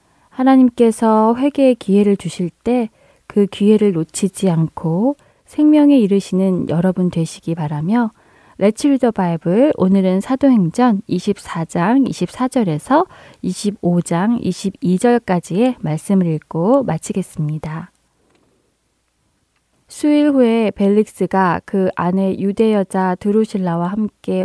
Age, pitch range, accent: 20-39, 180-220 Hz, native